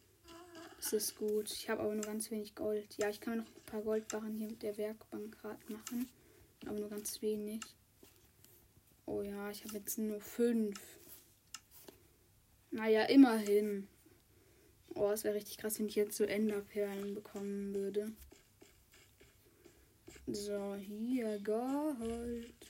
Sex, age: female, 20-39